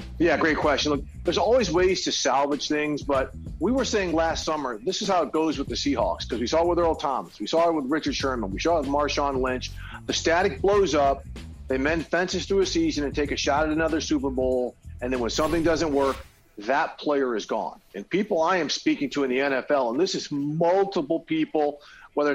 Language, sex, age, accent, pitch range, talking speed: English, male, 40-59, American, 125-165 Hz, 230 wpm